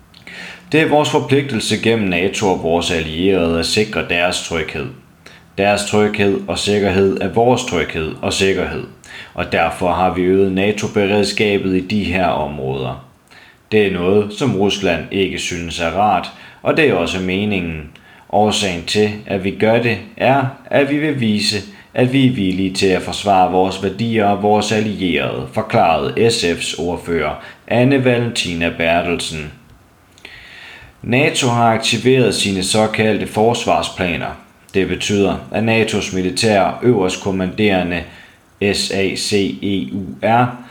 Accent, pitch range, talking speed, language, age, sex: native, 90-115 Hz, 130 wpm, Danish, 30-49, male